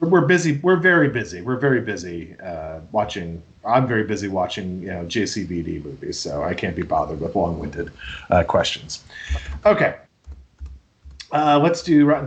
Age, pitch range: 40-59, 95-145 Hz